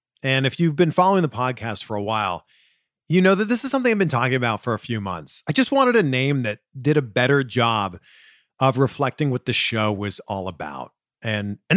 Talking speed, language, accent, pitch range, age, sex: 225 wpm, English, American, 125-195 Hz, 40-59, male